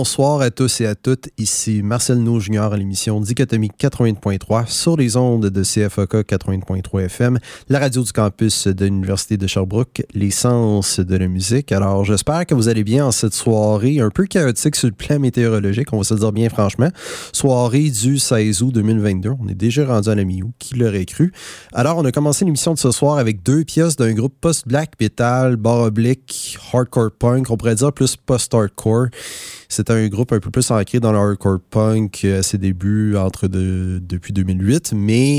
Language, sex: French, male